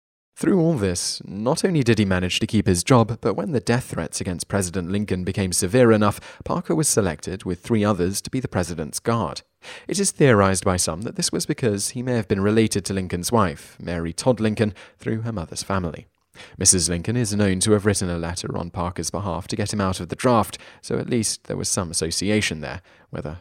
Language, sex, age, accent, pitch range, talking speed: English, male, 30-49, British, 90-115 Hz, 220 wpm